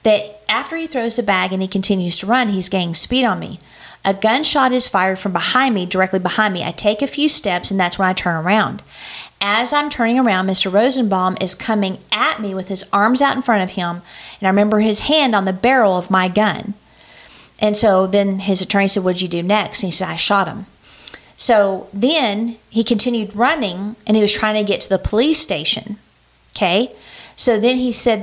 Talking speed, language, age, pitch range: 220 wpm, English, 40-59, 190-230 Hz